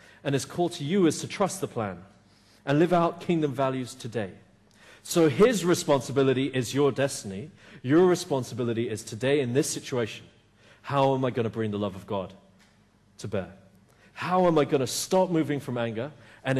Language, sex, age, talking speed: English, male, 40-59, 185 wpm